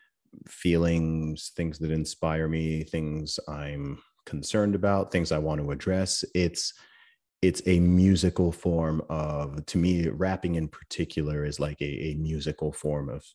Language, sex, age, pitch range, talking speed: English, male, 30-49, 70-80 Hz, 145 wpm